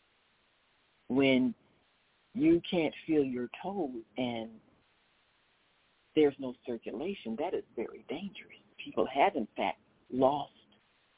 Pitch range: 135-220 Hz